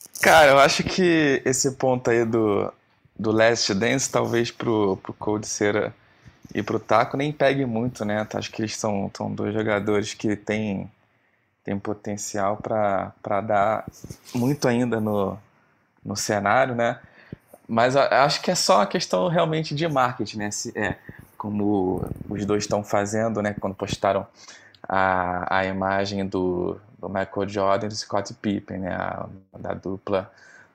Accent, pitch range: Brazilian, 100-120 Hz